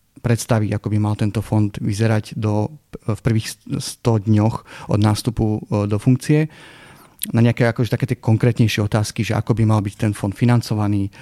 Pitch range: 105-115 Hz